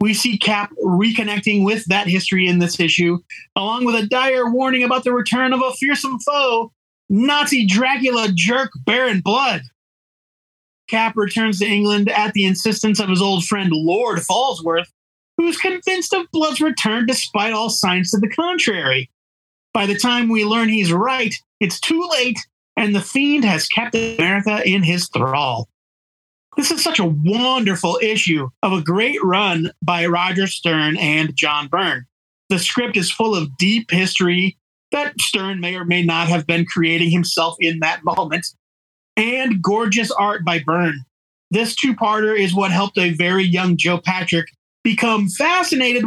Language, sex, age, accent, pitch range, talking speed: English, male, 30-49, American, 175-240 Hz, 165 wpm